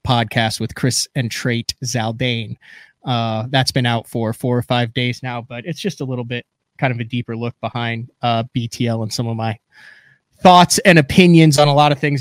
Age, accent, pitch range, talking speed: 20-39, American, 120-135 Hz, 205 wpm